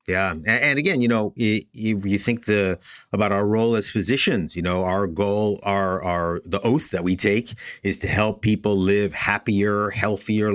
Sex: male